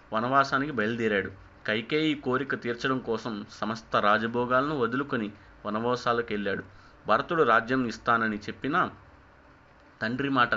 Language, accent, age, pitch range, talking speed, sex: Telugu, native, 30-49, 105-125 Hz, 90 wpm, male